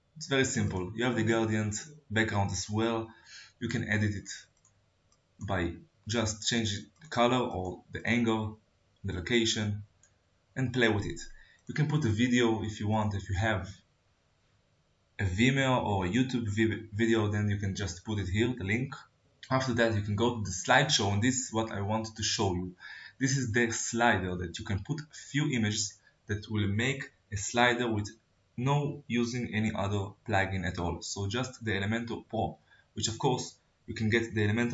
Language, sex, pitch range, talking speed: Hebrew, male, 100-120 Hz, 185 wpm